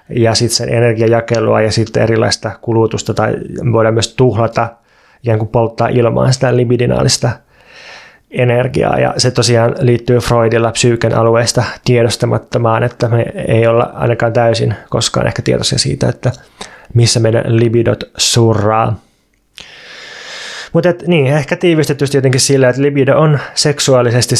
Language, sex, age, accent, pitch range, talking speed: Finnish, male, 20-39, native, 115-125 Hz, 130 wpm